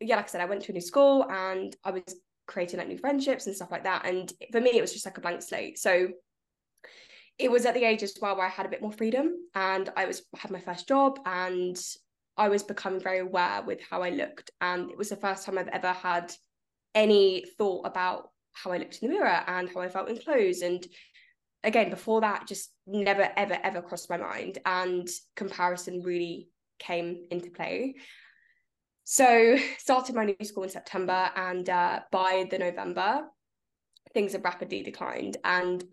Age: 10-29